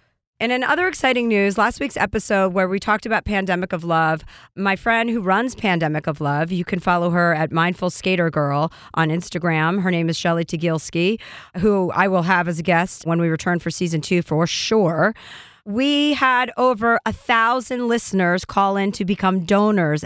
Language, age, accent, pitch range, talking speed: English, 40-59, American, 170-210 Hz, 190 wpm